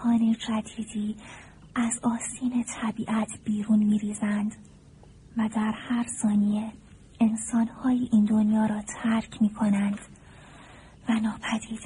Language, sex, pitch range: Persian, female, 215-230 Hz